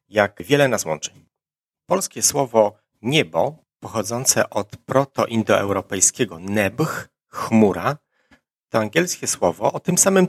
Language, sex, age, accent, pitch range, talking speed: Polish, male, 30-49, native, 95-130 Hz, 110 wpm